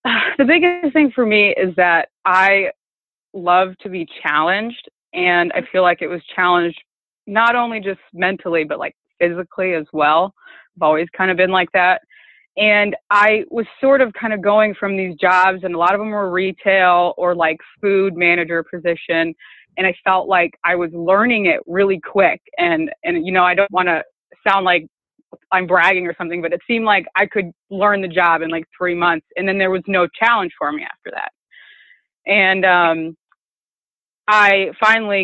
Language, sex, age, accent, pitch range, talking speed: English, female, 20-39, American, 175-205 Hz, 185 wpm